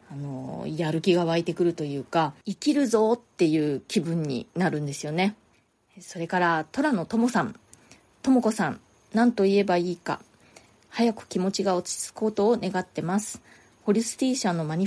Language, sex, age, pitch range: Japanese, female, 20-39, 170-225 Hz